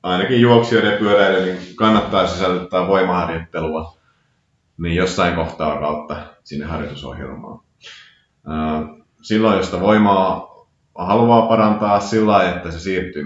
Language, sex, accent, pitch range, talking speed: Finnish, male, native, 80-100 Hz, 100 wpm